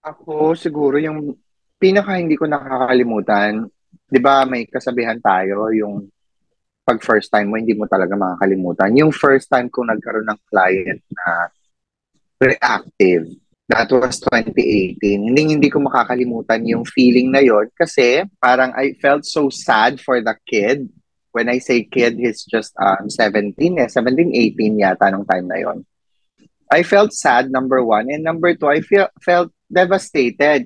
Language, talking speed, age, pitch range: Filipino, 155 wpm, 20-39, 115-160 Hz